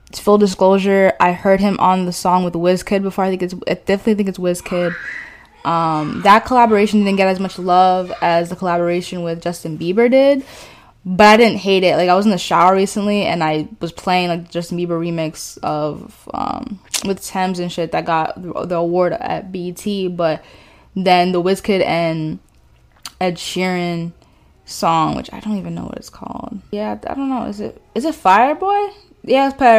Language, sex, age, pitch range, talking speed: English, female, 10-29, 175-205 Hz, 185 wpm